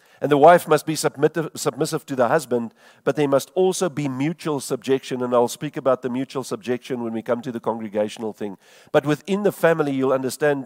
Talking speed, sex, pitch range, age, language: 205 wpm, male, 125-160 Hz, 50-69, English